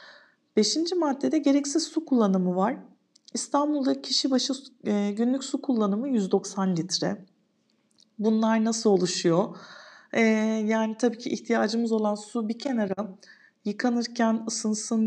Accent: native